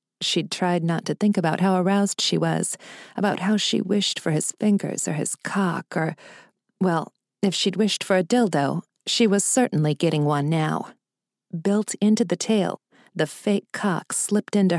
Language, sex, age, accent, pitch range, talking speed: English, female, 40-59, American, 160-210 Hz, 175 wpm